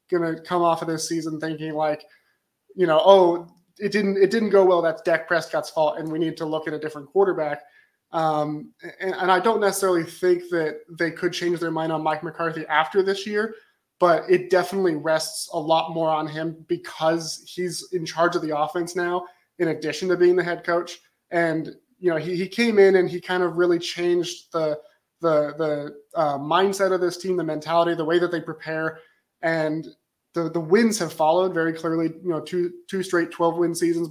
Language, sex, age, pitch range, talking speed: English, male, 20-39, 160-180 Hz, 210 wpm